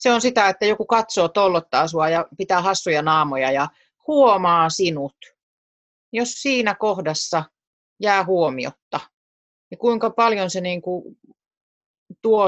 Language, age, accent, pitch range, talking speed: Finnish, 30-49, native, 145-195 Hz, 130 wpm